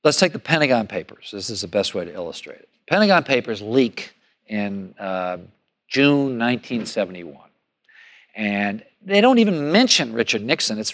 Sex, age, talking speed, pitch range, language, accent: male, 50-69, 155 wpm, 125-170 Hz, English, American